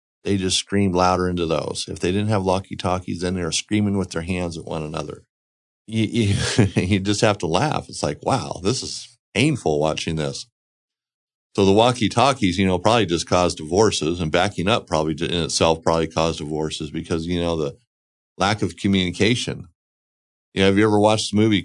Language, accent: English, American